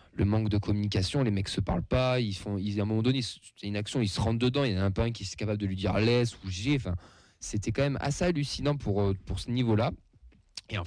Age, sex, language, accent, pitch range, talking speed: 20-39, male, French, French, 95-115 Hz, 305 wpm